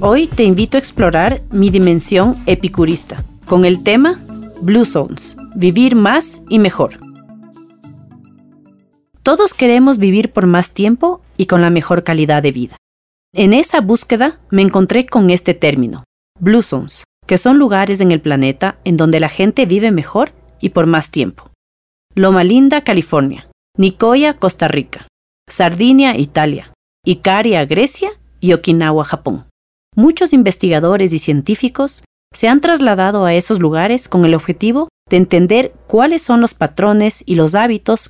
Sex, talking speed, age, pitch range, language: female, 145 wpm, 40-59, 165-235 Hz, Spanish